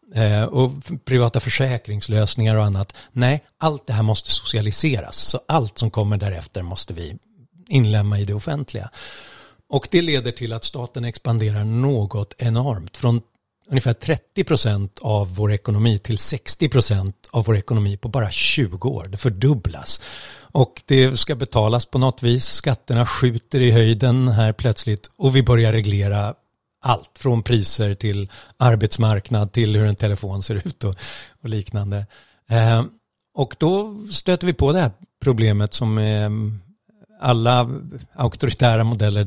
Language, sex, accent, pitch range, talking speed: English, male, Swedish, 105-130 Hz, 140 wpm